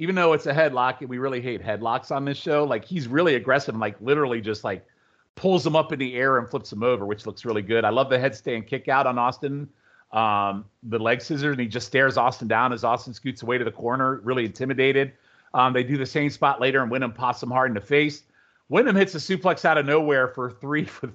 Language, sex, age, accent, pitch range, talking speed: English, male, 40-59, American, 125-150 Hz, 250 wpm